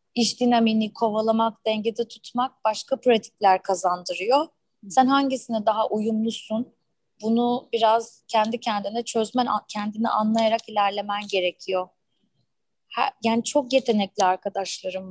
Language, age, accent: Turkish, 30-49, native